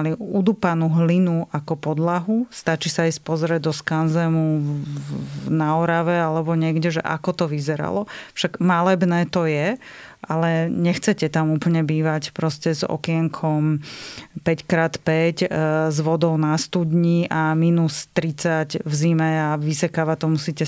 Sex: female